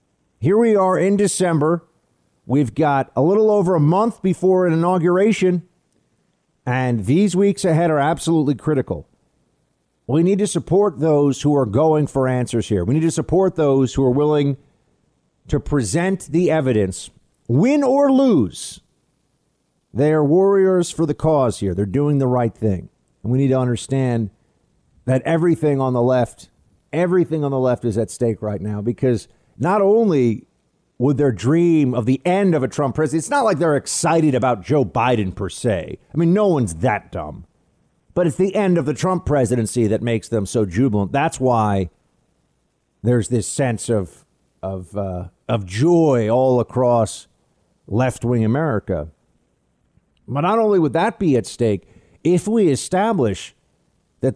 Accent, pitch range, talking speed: American, 115-170 Hz, 160 wpm